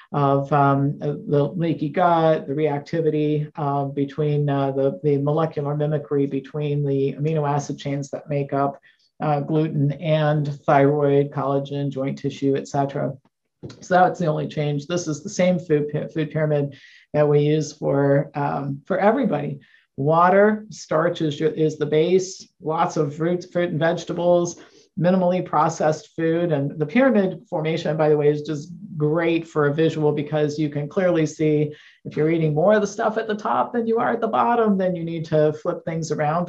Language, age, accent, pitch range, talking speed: English, 50-69, American, 145-165 Hz, 175 wpm